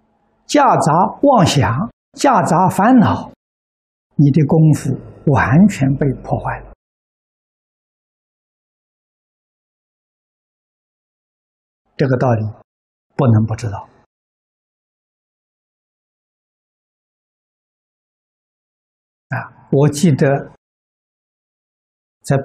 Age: 60-79